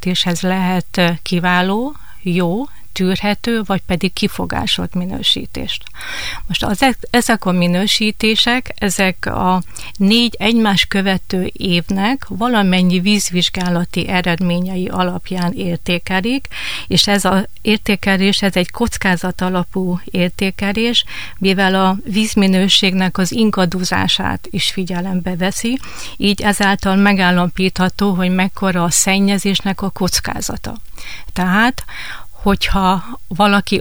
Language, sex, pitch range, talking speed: Hungarian, female, 180-200 Hz, 95 wpm